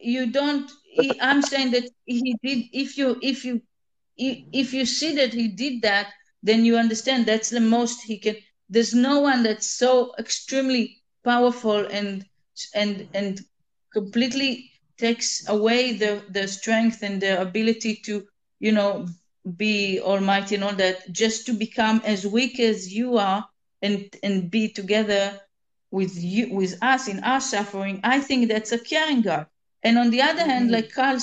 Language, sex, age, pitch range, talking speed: English, female, 40-59, 205-255 Hz, 165 wpm